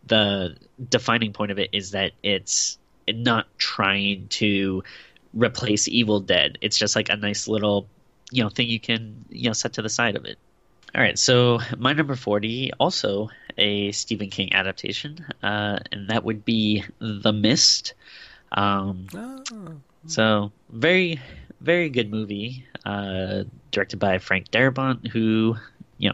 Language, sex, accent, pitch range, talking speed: English, male, American, 100-115 Hz, 145 wpm